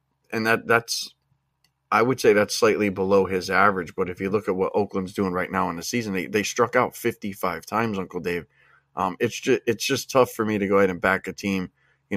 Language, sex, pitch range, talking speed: English, male, 95-105 Hz, 235 wpm